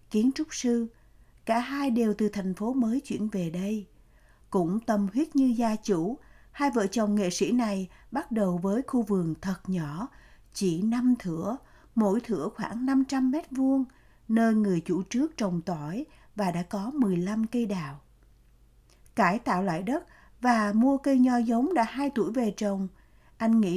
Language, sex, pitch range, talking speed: Vietnamese, female, 195-255 Hz, 175 wpm